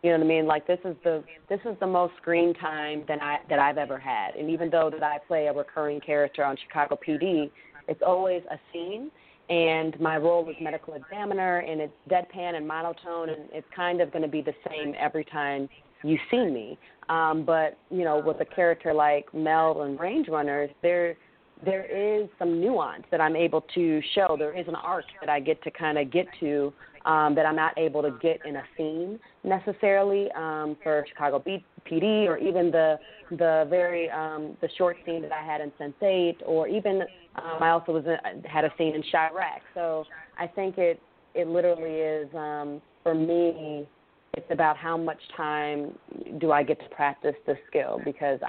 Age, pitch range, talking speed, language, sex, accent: 30-49, 150-170 Hz, 200 wpm, English, female, American